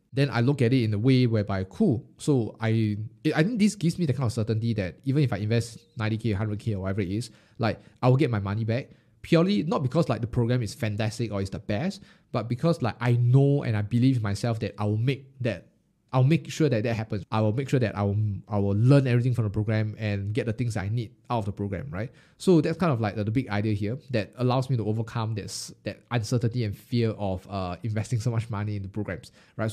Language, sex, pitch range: English, male, 110-145 Hz